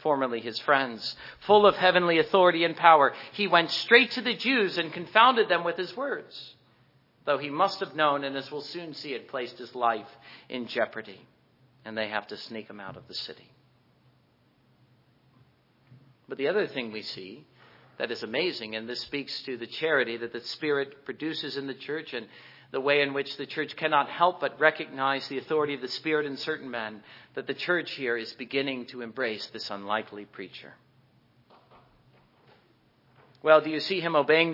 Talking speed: 180 wpm